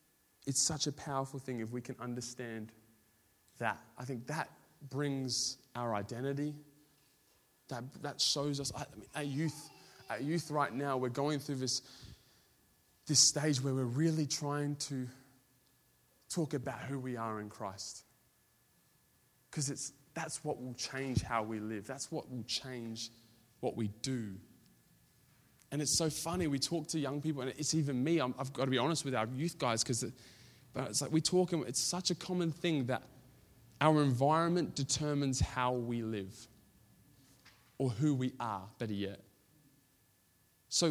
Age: 20-39